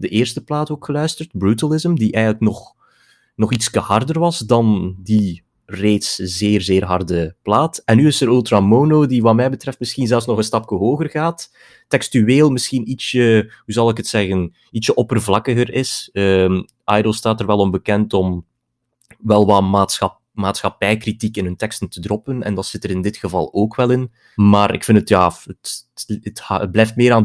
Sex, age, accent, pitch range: male, 30-49, Belgian, 95-115 Hz